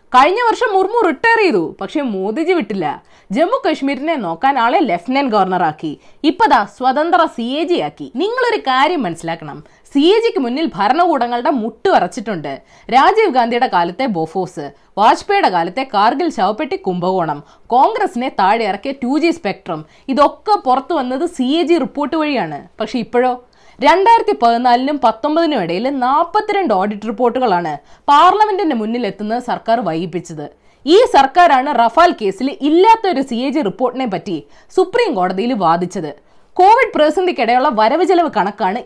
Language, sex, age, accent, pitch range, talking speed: Malayalam, female, 20-39, native, 220-355 Hz, 120 wpm